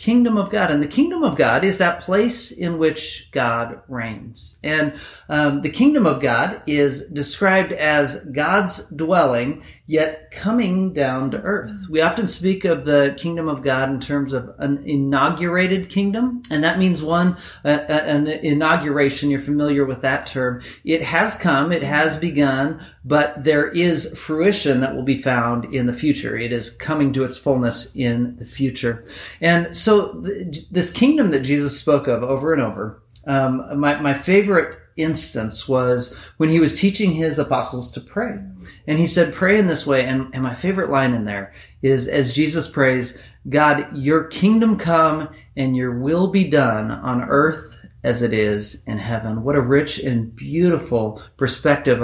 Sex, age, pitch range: male, 40-59, 125-160 Hz